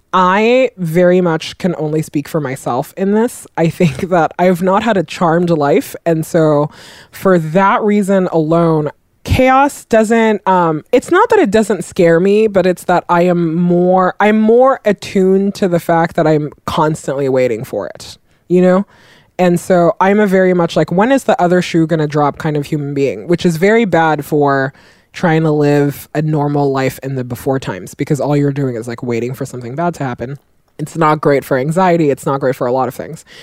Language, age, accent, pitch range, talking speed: English, 20-39, American, 150-195 Hz, 205 wpm